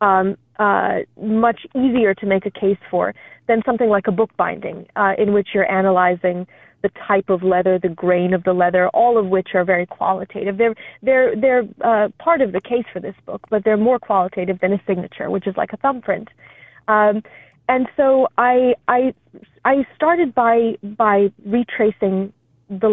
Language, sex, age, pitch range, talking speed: English, female, 30-49, 190-240 Hz, 180 wpm